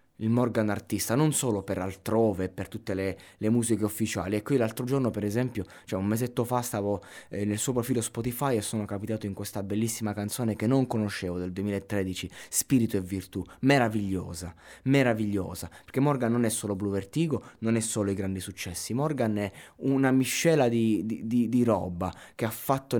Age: 20-39